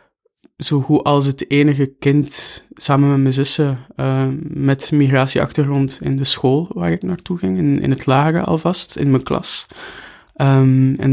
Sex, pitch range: male, 130-145 Hz